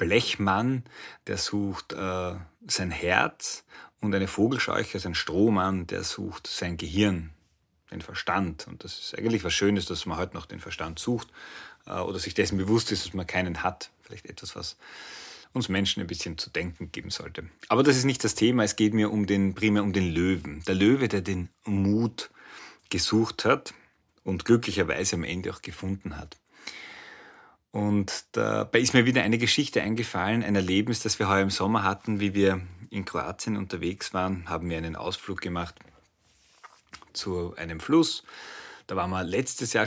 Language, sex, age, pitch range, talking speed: German, male, 30-49, 90-110 Hz, 170 wpm